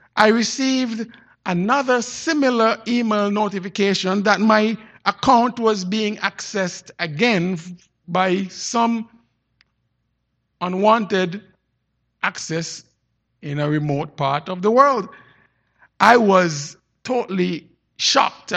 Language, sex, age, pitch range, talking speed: English, male, 50-69, 165-230 Hz, 90 wpm